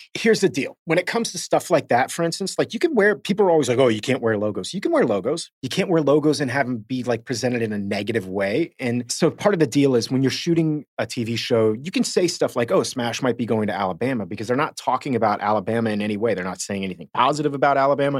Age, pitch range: 30-49, 105-140 Hz